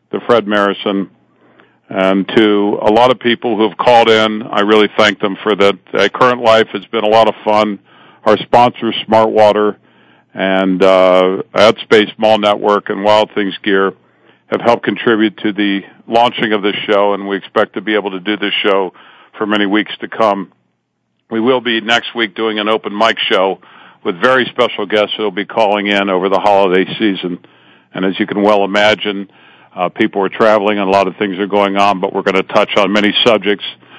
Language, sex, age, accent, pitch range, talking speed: English, male, 50-69, American, 100-110 Hz, 200 wpm